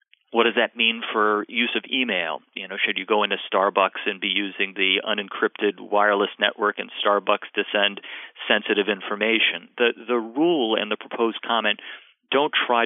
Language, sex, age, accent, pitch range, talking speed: English, male, 40-59, American, 100-115 Hz, 175 wpm